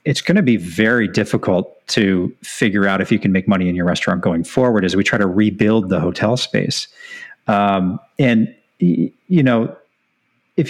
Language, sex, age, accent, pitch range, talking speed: English, male, 40-59, American, 100-130 Hz, 180 wpm